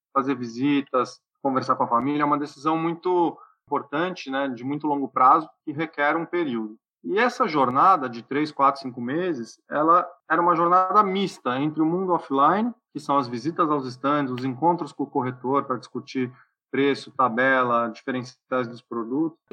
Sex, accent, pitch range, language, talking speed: male, Brazilian, 130-170 Hz, Portuguese, 170 wpm